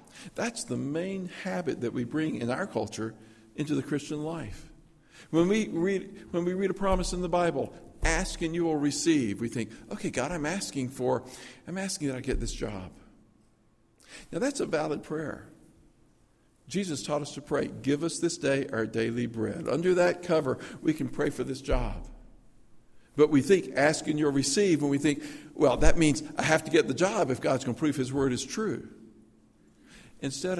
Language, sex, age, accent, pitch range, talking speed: English, male, 50-69, American, 115-165 Hz, 195 wpm